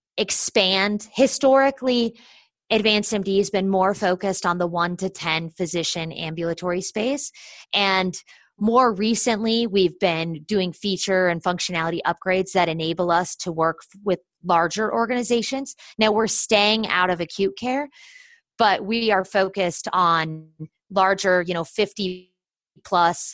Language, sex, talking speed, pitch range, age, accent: English, female, 130 wpm, 170-205 Hz, 20-39, American